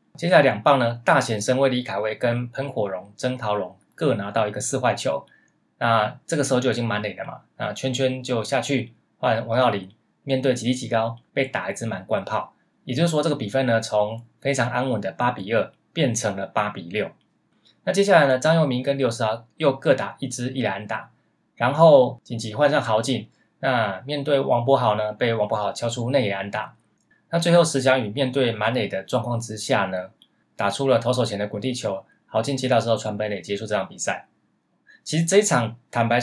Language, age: Chinese, 20-39